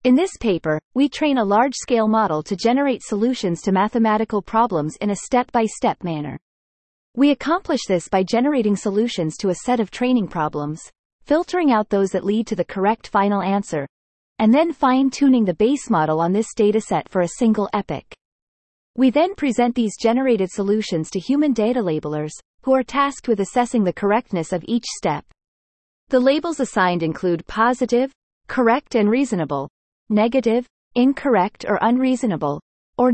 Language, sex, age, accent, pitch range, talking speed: English, female, 30-49, American, 180-245 Hz, 160 wpm